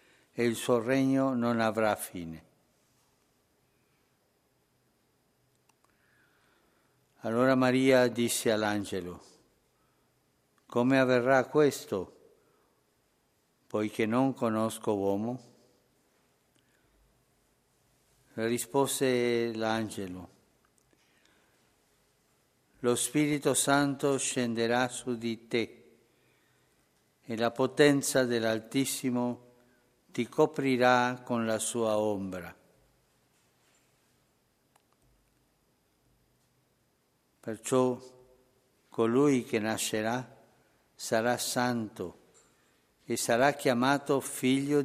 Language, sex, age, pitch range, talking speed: Italian, male, 60-79, 110-130 Hz, 65 wpm